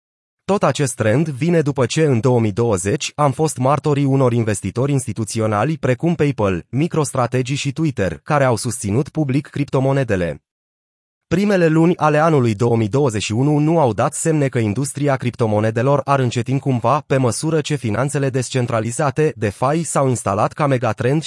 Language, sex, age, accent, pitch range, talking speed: Romanian, male, 20-39, native, 120-150 Hz, 140 wpm